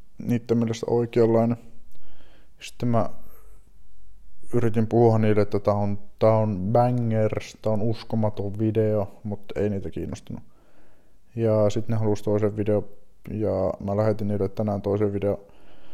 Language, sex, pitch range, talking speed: Finnish, male, 100-120 Hz, 130 wpm